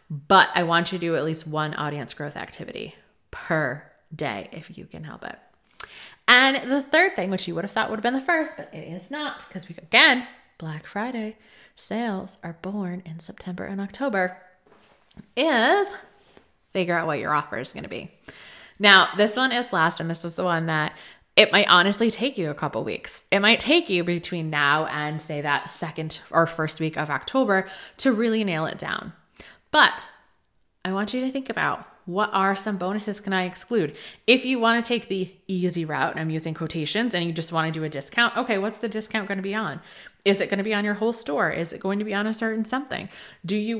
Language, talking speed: English, 220 wpm